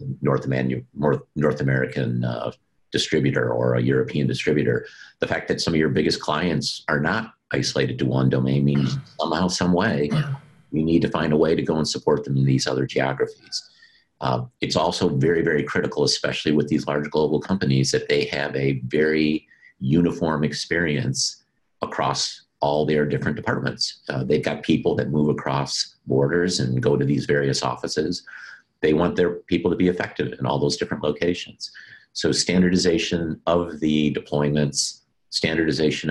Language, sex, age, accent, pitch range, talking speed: English, male, 50-69, American, 70-85 Hz, 165 wpm